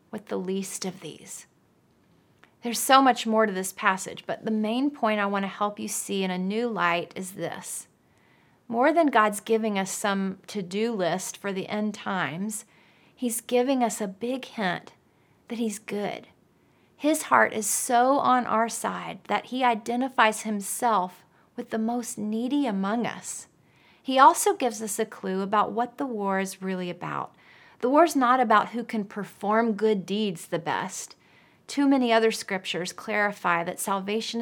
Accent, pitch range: American, 195-240 Hz